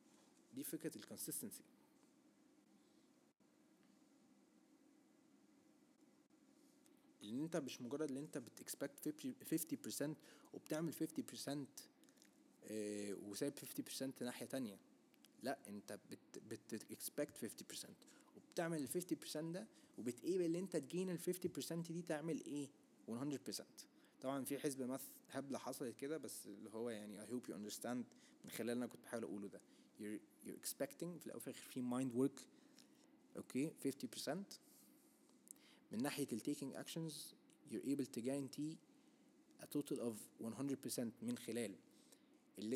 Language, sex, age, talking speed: Arabic, male, 20-39, 90 wpm